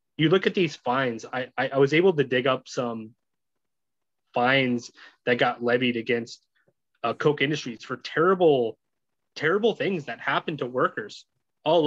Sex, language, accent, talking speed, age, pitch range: male, English, American, 155 wpm, 20-39, 125-155 Hz